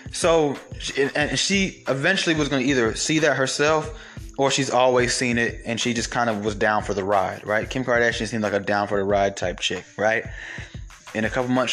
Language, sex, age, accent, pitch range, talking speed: English, male, 20-39, American, 115-140 Hz, 205 wpm